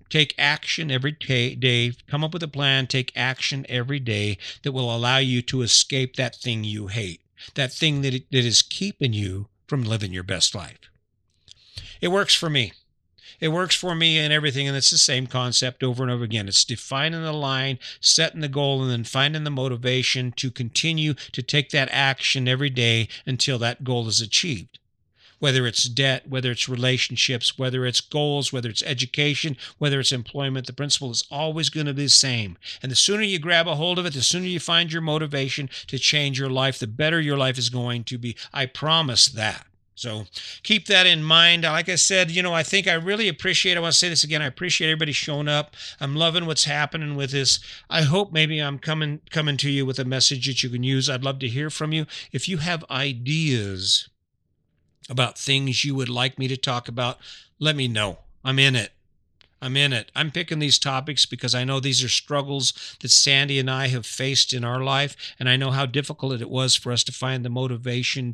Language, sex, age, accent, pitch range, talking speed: English, male, 50-69, American, 120-150 Hz, 210 wpm